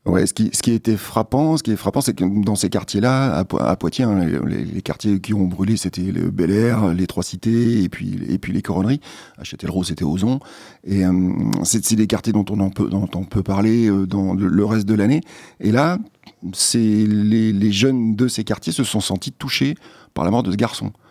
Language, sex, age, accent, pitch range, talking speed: French, male, 40-59, French, 95-110 Hz, 230 wpm